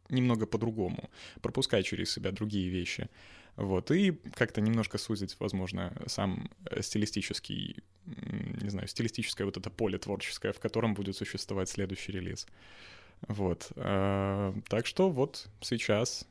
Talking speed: 120 wpm